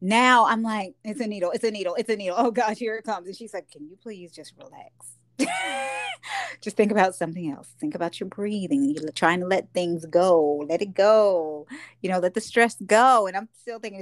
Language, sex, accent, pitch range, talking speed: English, female, American, 165-240 Hz, 225 wpm